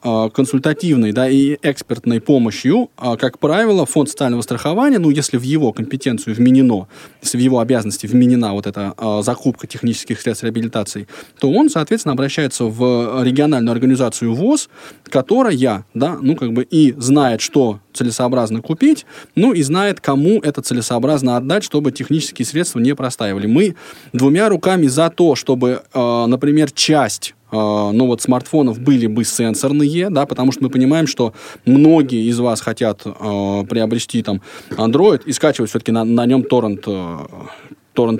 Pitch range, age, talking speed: 120-150 Hz, 20-39, 145 wpm